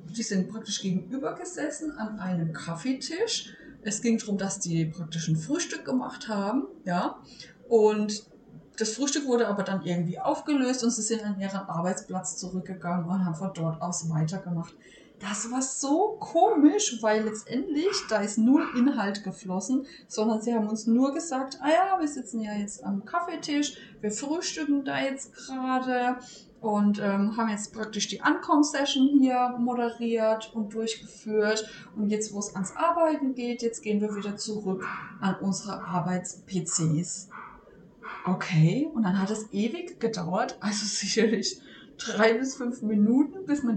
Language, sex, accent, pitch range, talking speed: German, female, German, 195-260 Hz, 150 wpm